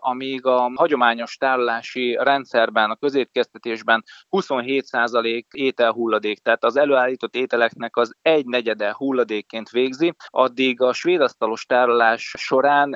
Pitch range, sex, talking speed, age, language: 115-135 Hz, male, 95 wpm, 20-39, Hungarian